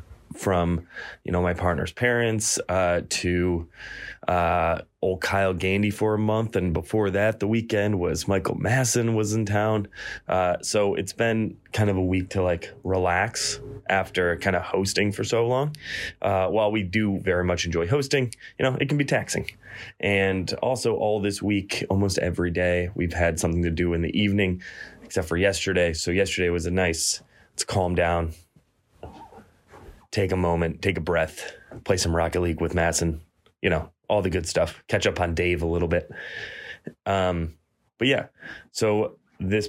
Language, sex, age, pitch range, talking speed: English, male, 20-39, 85-105 Hz, 175 wpm